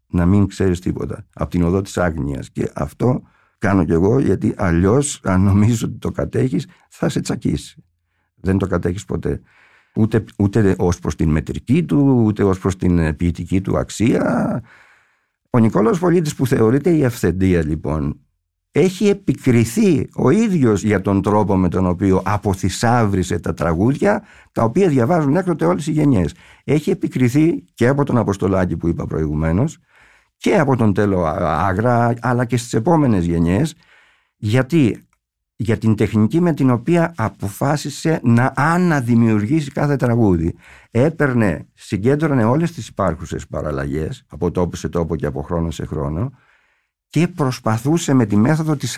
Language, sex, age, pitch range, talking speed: Greek, male, 50-69, 90-140 Hz, 150 wpm